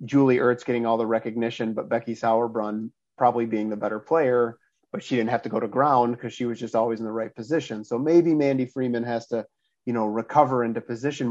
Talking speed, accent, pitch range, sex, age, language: 225 wpm, American, 115-130 Hz, male, 30-49, English